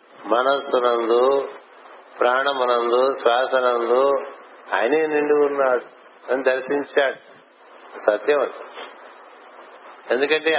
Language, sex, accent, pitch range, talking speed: Telugu, male, native, 125-150 Hz, 70 wpm